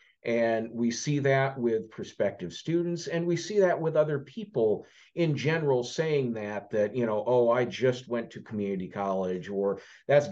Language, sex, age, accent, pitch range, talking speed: English, male, 50-69, American, 110-145 Hz, 175 wpm